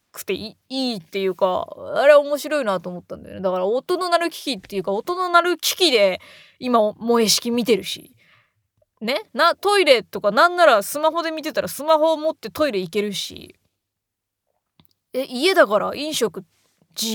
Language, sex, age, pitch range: Japanese, female, 20-39, 180-295 Hz